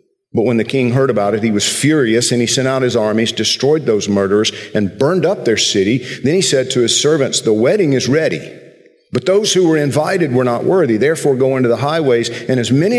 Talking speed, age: 230 wpm, 50-69